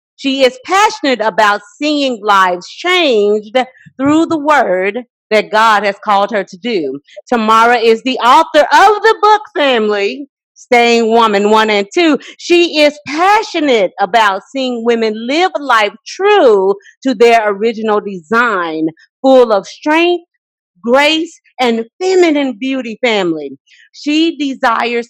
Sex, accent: female, American